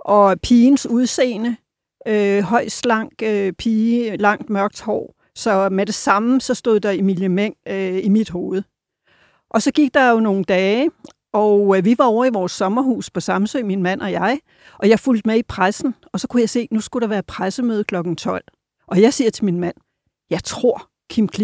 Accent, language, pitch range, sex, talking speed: native, Danish, 195-250 Hz, female, 205 wpm